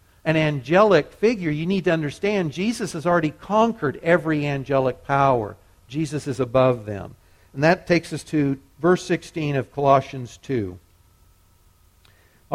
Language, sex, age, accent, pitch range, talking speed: English, male, 50-69, American, 130-185 Hz, 135 wpm